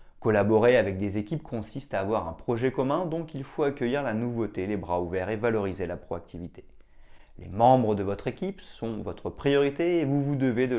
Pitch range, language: 100-135 Hz, French